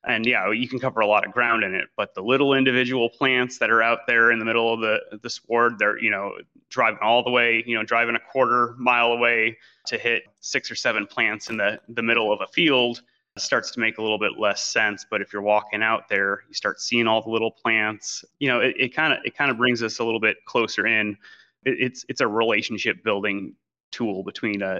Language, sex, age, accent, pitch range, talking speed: English, male, 30-49, American, 105-120 Hz, 240 wpm